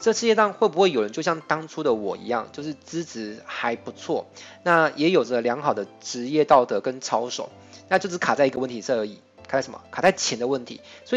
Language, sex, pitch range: Chinese, male, 125-180 Hz